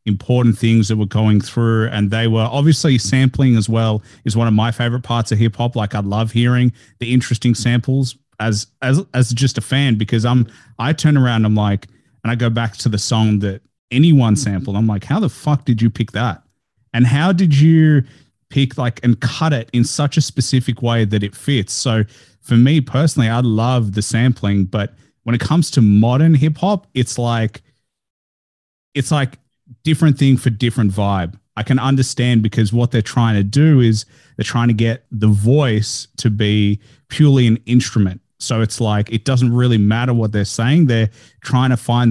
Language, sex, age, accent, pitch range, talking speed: English, male, 30-49, Australian, 110-130 Hz, 195 wpm